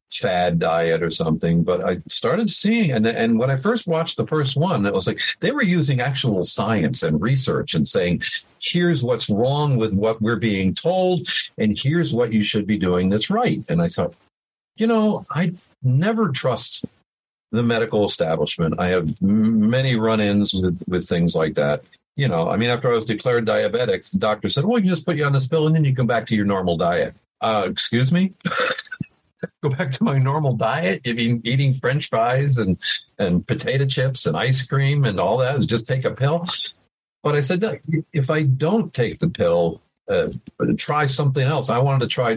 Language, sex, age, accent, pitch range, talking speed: English, male, 50-69, American, 110-170 Hz, 205 wpm